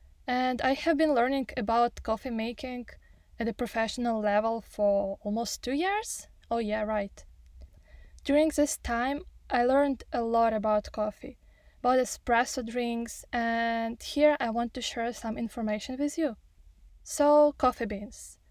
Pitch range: 215-270 Hz